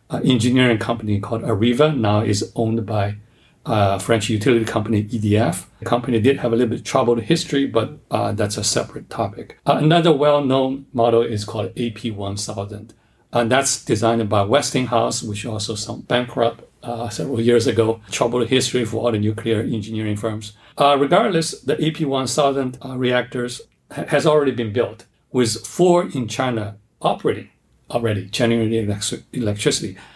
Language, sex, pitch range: English, male, 105-125 Hz